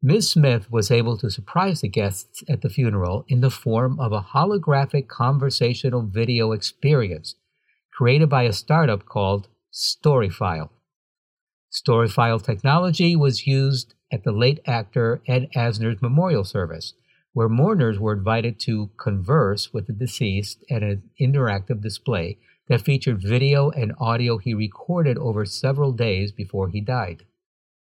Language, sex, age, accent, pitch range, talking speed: English, male, 60-79, American, 105-140 Hz, 140 wpm